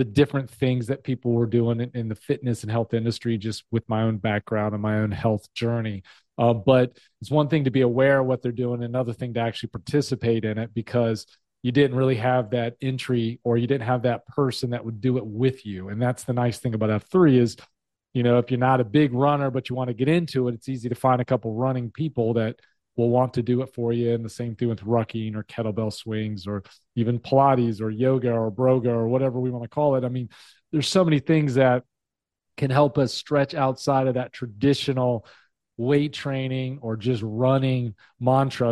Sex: male